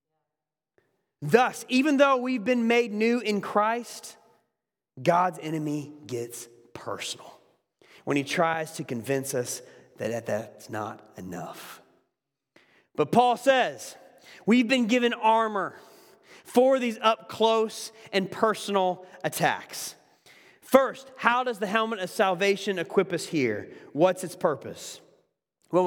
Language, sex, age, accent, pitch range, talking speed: English, male, 30-49, American, 145-225 Hz, 120 wpm